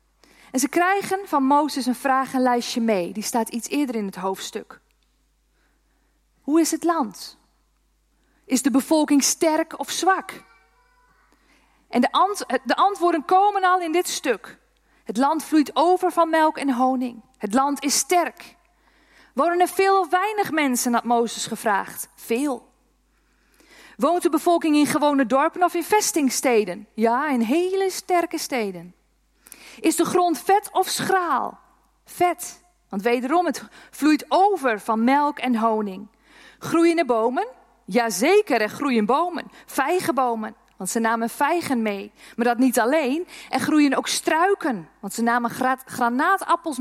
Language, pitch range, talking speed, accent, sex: Dutch, 240-335 Hz, 140 wpm, Dutch, female